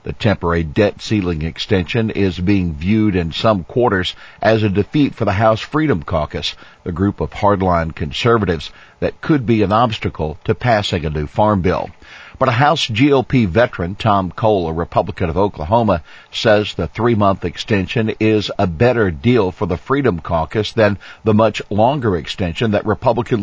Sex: male